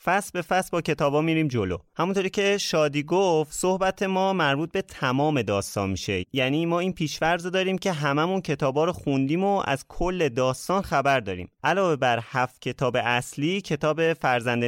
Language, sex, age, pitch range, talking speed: Persian, male, 30-49, 125-175 Hz, 170 wpm